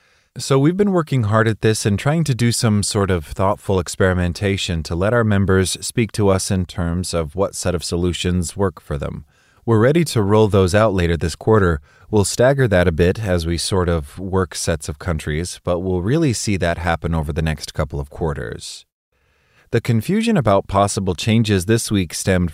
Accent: American